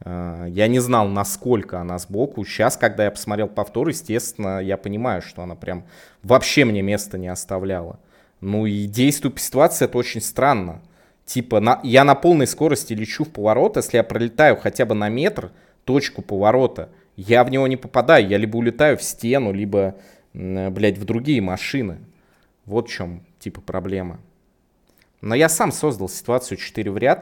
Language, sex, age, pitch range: English, male, 20-39, 95-120 Hz